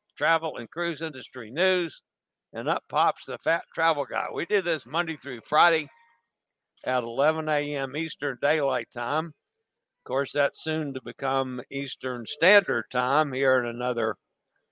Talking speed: 145 wpm